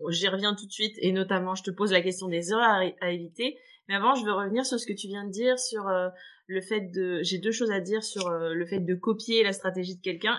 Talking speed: 290 wpm